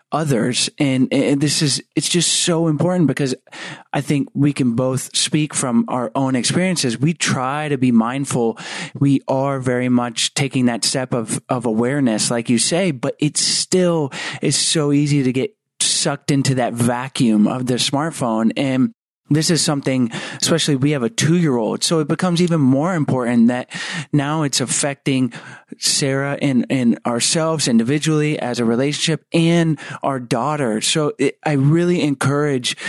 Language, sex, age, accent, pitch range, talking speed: English, male, 30-49, American, 130-160 Hz, 165 wpm